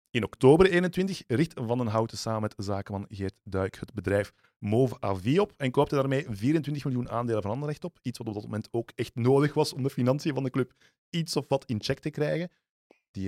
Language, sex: Dutch, male